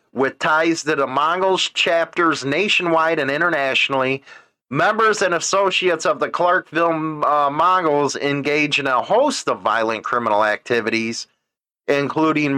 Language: English